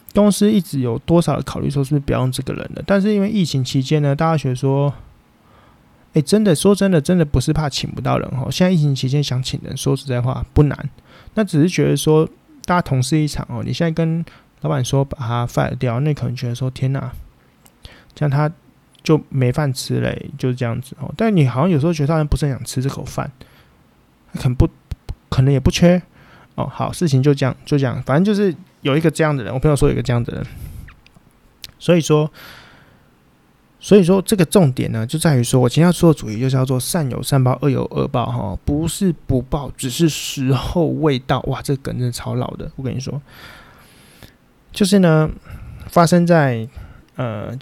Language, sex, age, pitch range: Chinese, male, 20-39, 130-160 Hz